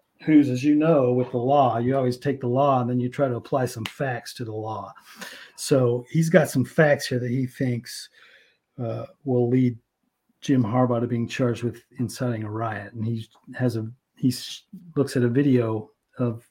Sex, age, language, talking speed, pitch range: male, 40-59, English, 195 wpm, 125-150 Hz